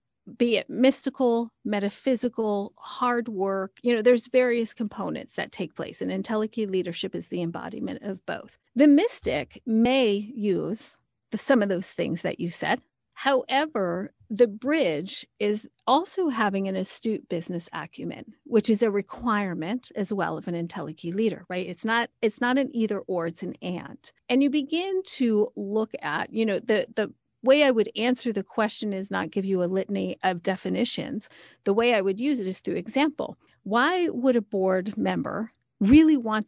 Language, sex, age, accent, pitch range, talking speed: English, female, 40-59, American, 195-250 Hz, 175 wpm